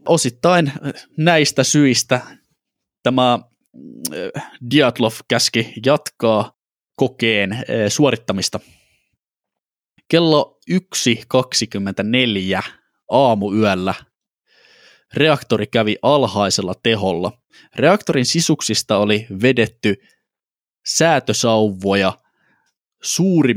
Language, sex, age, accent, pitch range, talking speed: Finnish, male, 20-39, native, 105-135 Hz, 55 wpm